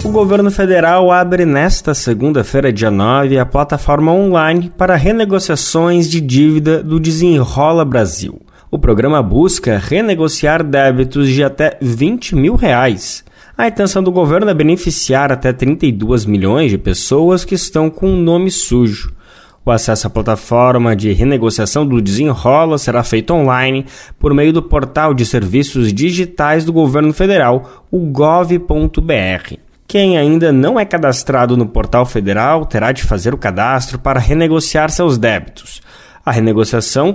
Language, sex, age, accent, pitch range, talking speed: Portuguese, male, 20-39, Brazilian, 120-170 Hz, 140 wpm